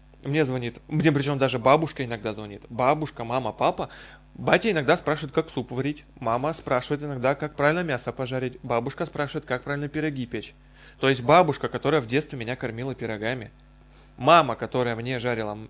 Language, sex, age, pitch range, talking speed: Russian, male, 20-39, 115-150 Hz, 165 wpm